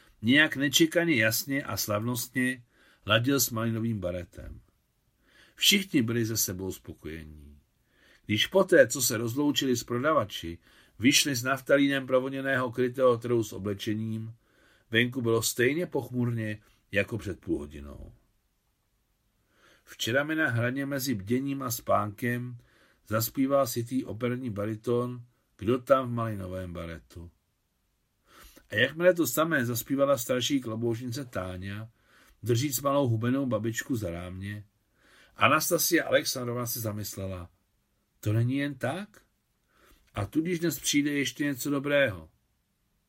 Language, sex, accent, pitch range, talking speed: Czech, male, native, 105-135 Hz, 115 wpm